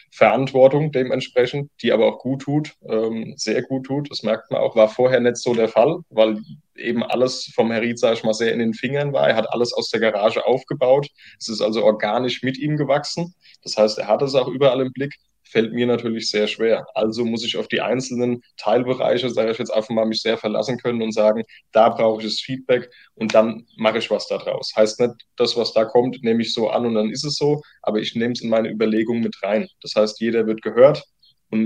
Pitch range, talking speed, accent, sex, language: 110-130 Hz, 230 wpm, German, male, German